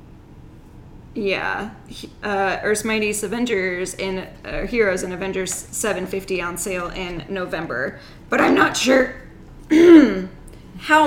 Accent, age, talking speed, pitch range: American, 10-29, 110 wpm, 185-210 Hz